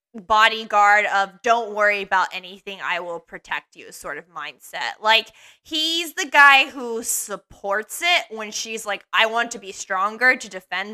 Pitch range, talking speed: 200-240 Hz, 165 wpm